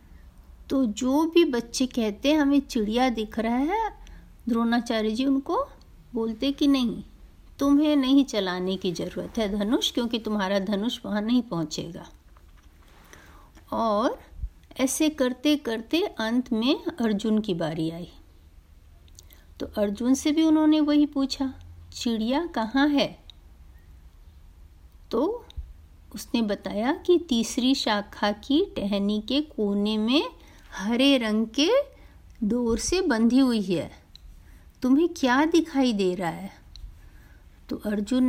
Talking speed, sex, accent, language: 120 wpm, female, native, Hindi